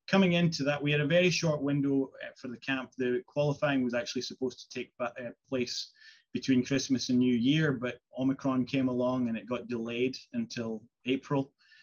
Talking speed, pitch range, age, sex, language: 180 wpm, 115-140 Hz, 20-39, male, English